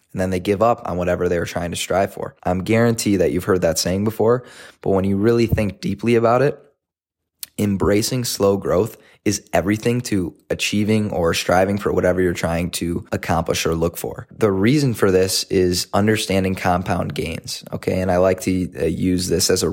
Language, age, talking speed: English, 20-39, 190 wpm